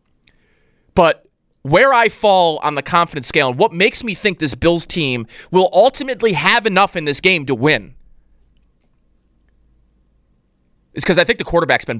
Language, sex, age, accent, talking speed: English, male, 30-49, American, 160 wpm